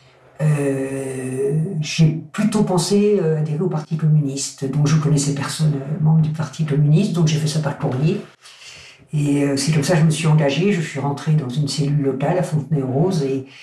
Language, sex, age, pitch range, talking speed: French, female, 50-69, 140-170 Hz, 200 wpm